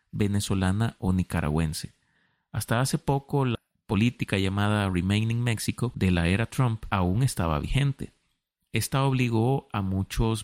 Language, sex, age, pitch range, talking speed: Spanish, male, 30-49, 95-125 Hz, 125 wpm